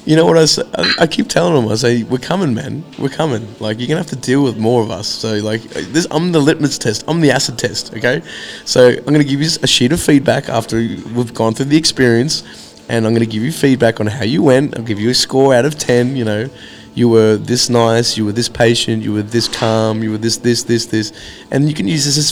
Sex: male